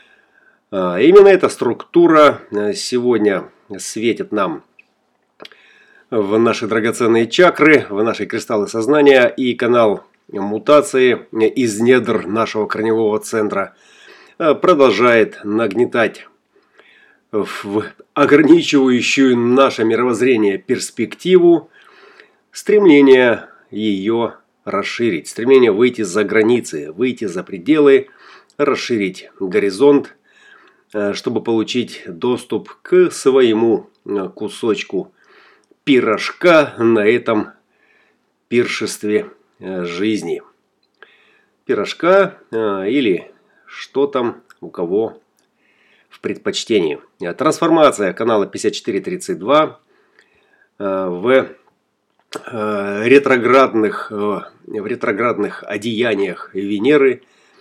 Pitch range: 110-165 Hz